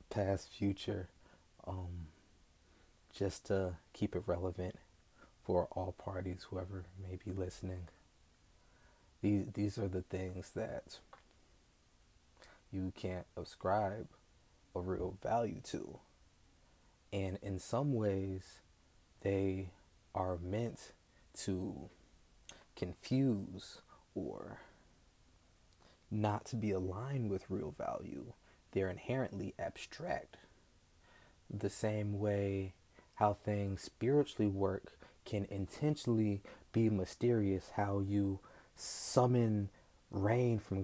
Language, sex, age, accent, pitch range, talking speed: English, male, 20-39, American, 90-105 Hz, 95 wpm